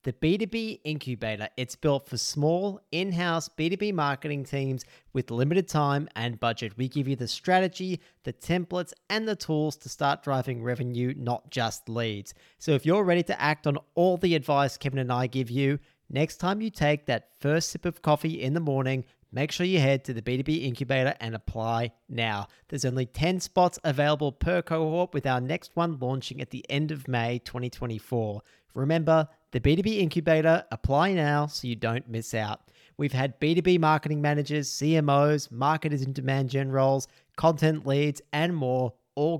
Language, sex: English, male